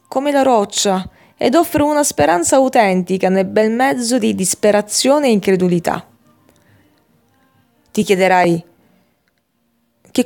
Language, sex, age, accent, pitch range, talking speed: Italian, female, 20-39, native, 180-255 Hz, 105 wpm